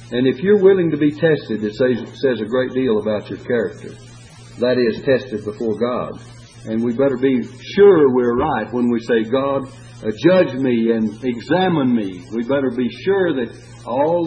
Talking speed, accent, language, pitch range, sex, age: 190 wpm, American, English, 115-140 Hz, male, 60-79